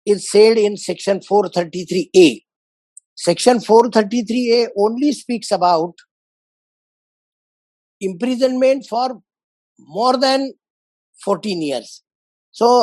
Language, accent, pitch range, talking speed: English, Indian, 175-230 Hz, 80 wpm